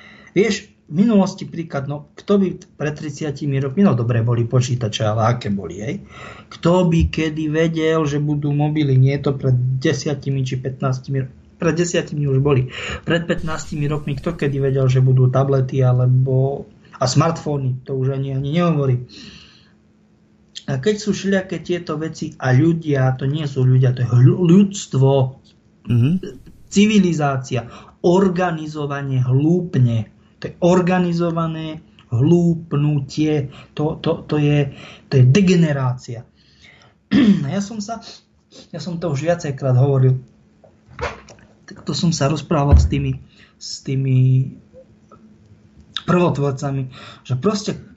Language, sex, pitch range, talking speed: Czech, male, 130-170 Hz, 125 wpm